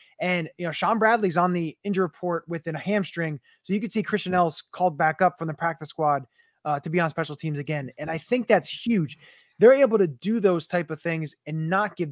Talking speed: 240 wpm